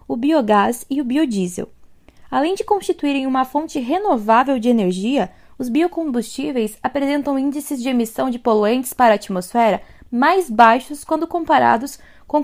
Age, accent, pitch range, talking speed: 10-29, Brazilian, 245-315 Hz, 140 wpm